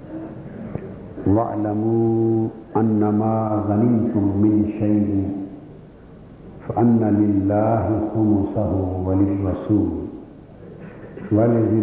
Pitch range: 100-120 Hz